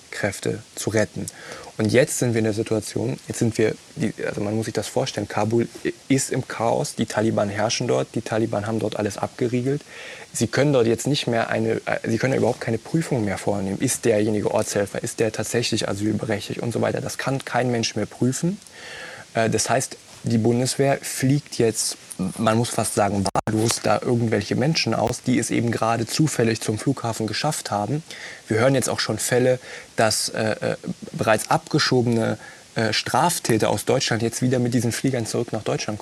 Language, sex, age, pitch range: German, male, 20-39, 110-125 Hz